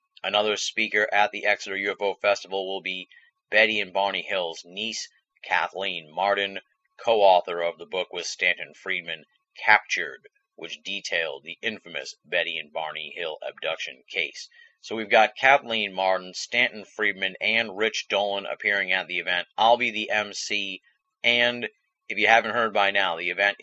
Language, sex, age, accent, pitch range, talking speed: English, male, 30-49, American, 95-120 Hz, 155 wpm